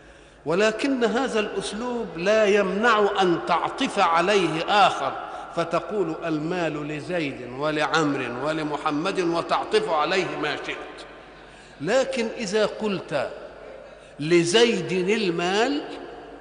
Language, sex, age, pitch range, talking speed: Arabic, male, 50-69, 165-235 Hz, 85 wpm